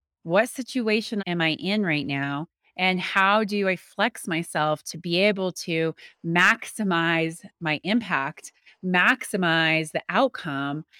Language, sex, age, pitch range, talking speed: English, female, 20-39, 160-205 Hz, 125 wpm